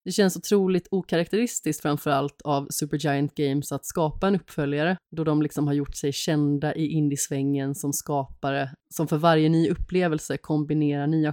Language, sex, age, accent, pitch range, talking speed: Swedish, female, 30-49, native, 145-175 Hz, 160 wpm